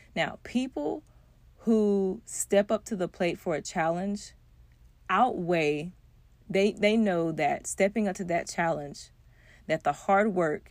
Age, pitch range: 30-49, 155-205 Hz